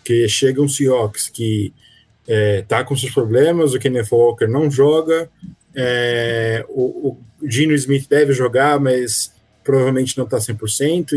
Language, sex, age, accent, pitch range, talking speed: Portuguese, male, 20-39, Brazilian, 115-145 Hz, 140 wpm